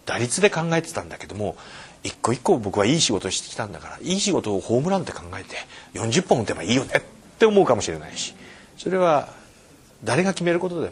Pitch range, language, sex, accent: 105-165 Hz, Japanese, male, native